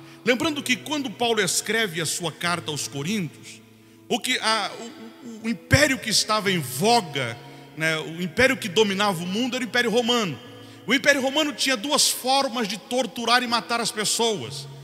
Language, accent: Portuguese, Brazilian